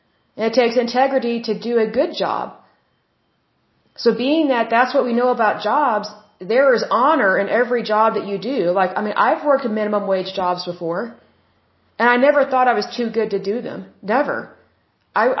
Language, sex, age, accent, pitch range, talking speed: Russian, female, 30-49, American, 205-250 Hz, 195 wpm